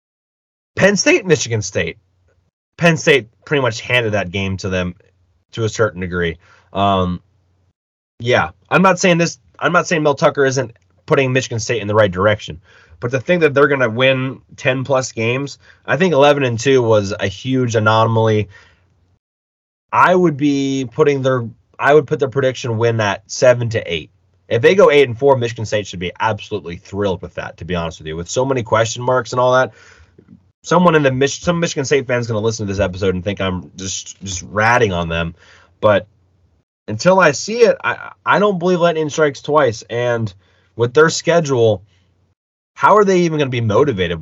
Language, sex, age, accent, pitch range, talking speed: English, male, 20-39, American, 95-145 Hz, 195 wpm